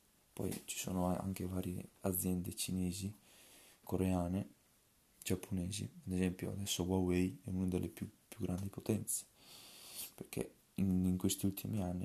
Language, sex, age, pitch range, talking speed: Italian, male, 20-39, 90-100 Hz, 130 wpm